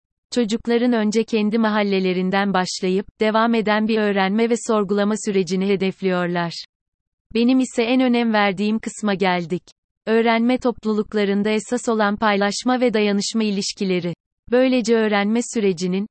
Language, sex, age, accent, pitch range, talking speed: Turkish, female, 30-49, native, 200-225 Hz, 115 wpm